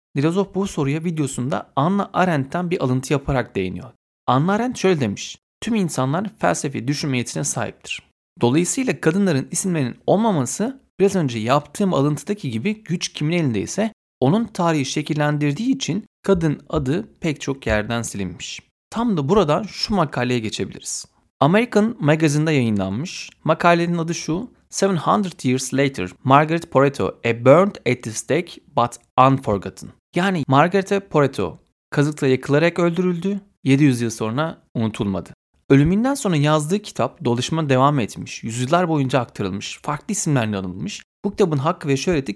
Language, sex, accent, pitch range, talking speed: Turkish, male, native, 130-180 Hz, 135 wpm